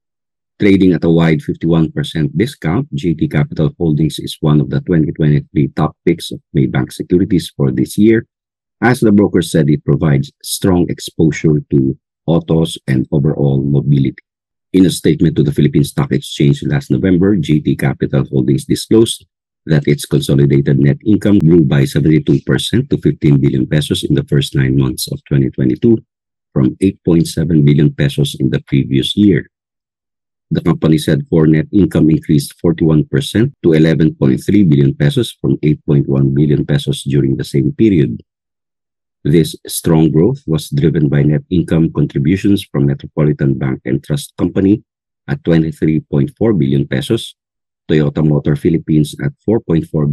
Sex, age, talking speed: male, 50-69, 145 wpm